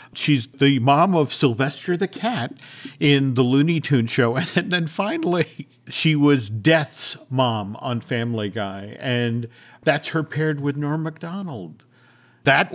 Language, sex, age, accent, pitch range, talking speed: English, male, 50-69, American, 115-155 Hz, 140 wpm